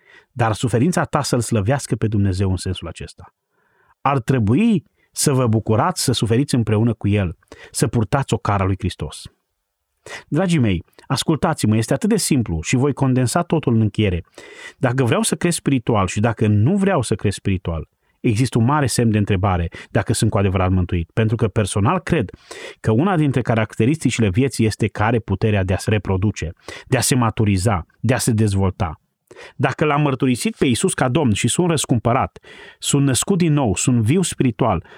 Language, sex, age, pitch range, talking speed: Romanian, male, 30-49, 105-150 Hz, 175 wpm